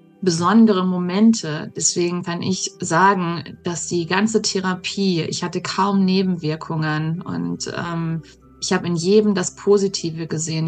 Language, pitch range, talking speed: German, 165-205 Hz, 130 wpm